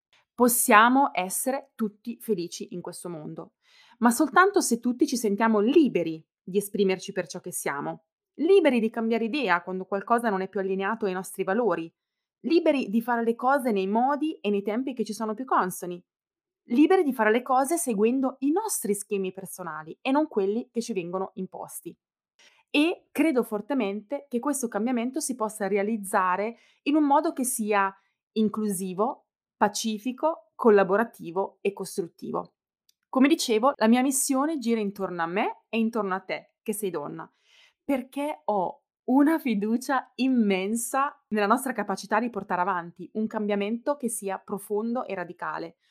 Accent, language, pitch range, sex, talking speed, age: native, Italian, 195-265 Hz, female, 155 wpm, 20-39